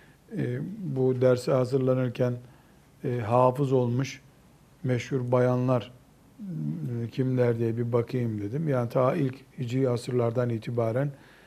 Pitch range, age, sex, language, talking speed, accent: 125-150 Hz, 60-79, male, Turkish, 110 wpm, native